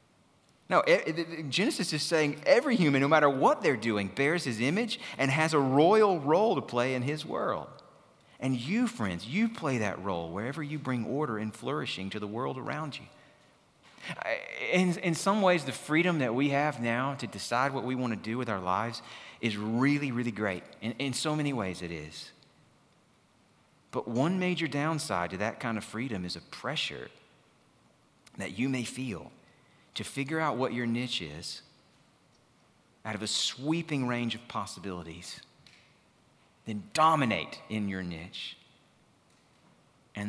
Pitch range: 110-155 Hz